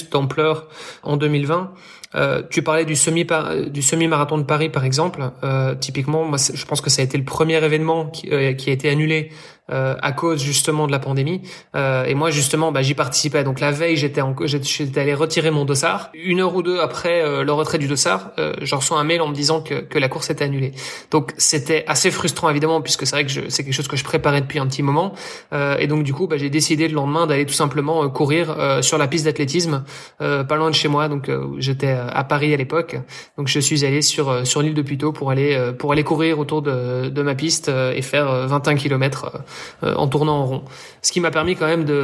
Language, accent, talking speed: French, French, 240 wpm